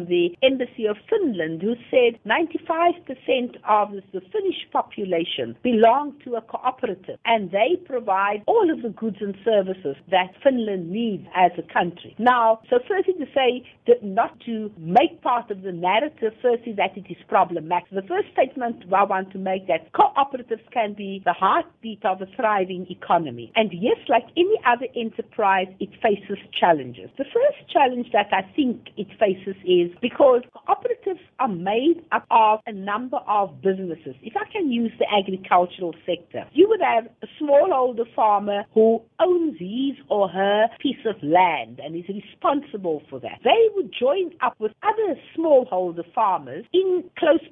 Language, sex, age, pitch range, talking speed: English, female, 50-69, 195-280 Hz, 165 wpm